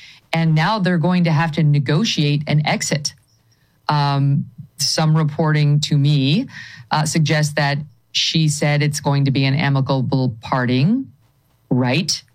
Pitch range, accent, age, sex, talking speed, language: 140-170 Hz, American, 40-59, female, 135 wpm, English